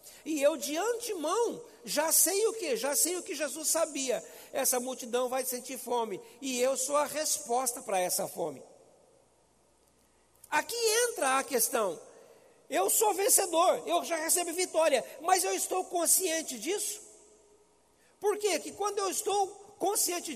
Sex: male